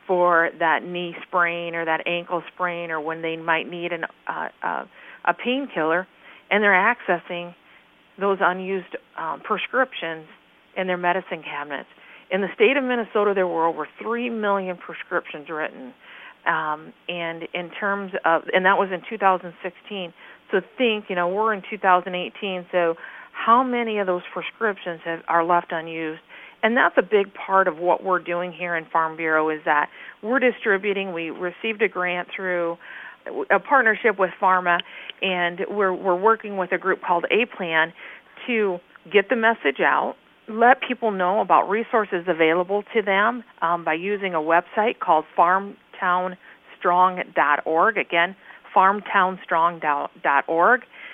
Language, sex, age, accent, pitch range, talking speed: English, female, 40-59, American, 170-205 Hz, 145 wpm